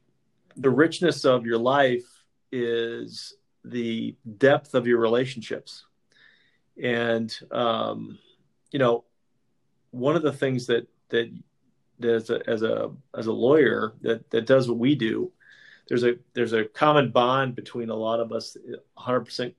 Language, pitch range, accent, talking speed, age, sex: English, 115-130 Hz, American, 150 wpm, 40-59, male